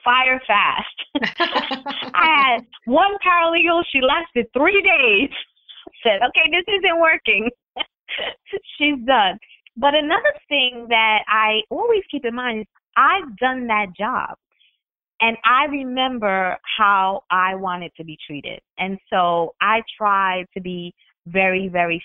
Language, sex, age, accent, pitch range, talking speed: English, female, 20-39, American, 165-230 Hz, 135 wpm